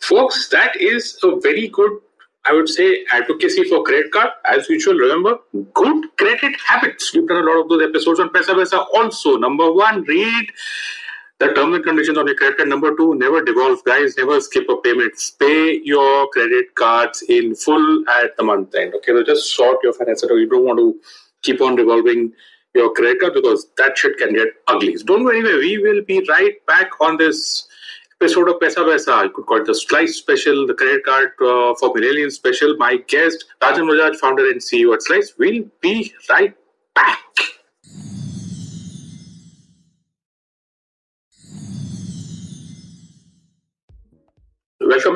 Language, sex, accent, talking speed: English, male, Indian, 165 wpm